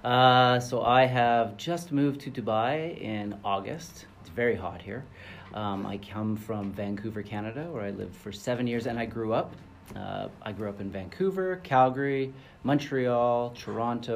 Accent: American